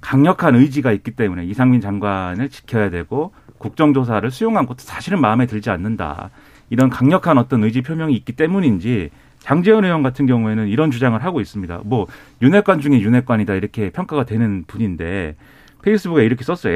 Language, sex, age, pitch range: Korean, male, 40-59, 110-155 Hz